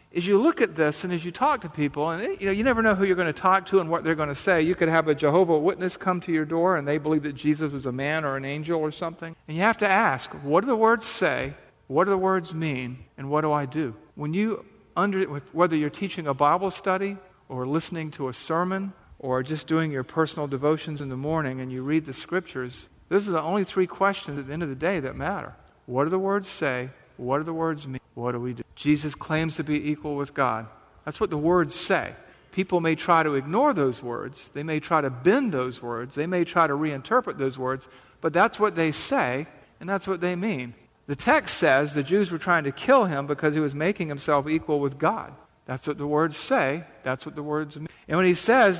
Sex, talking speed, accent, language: male, 250 wpm, American, English